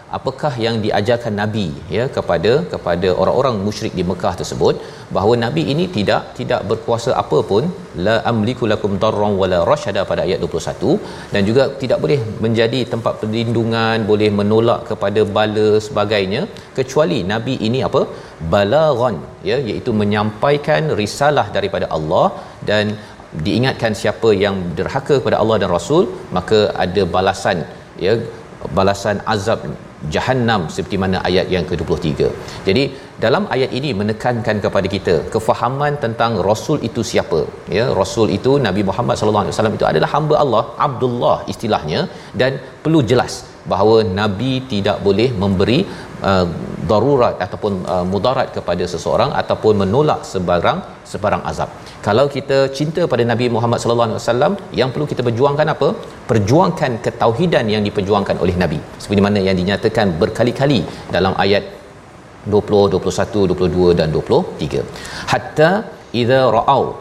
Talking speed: 140 wpm